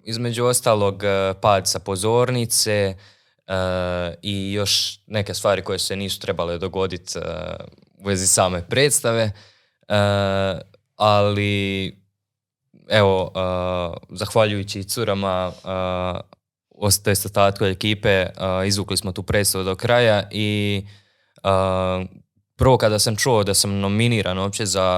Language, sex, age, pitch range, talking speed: Croatian, male, 20-39, 95-105 Hz, 115 wpm